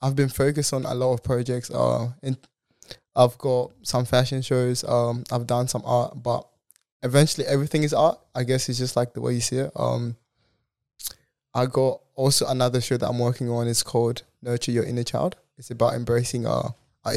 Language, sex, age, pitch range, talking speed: English, male, 20-39, 120-130 Hz, 195 wpm